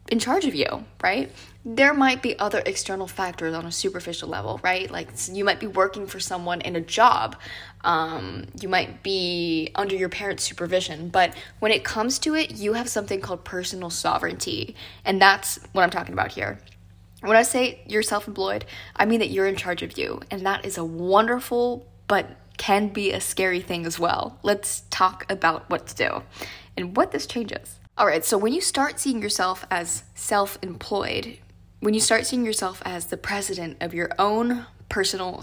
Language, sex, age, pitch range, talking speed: English, female, 10-29, 170-215 Hz, 190 wpm